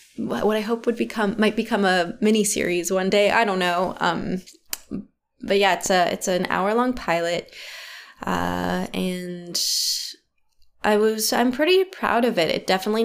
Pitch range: 175-225 Hz